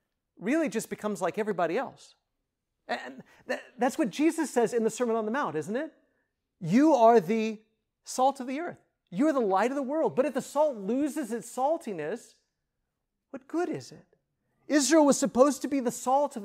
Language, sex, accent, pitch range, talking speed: English, male, American, 195-265 Hz, 190 wpm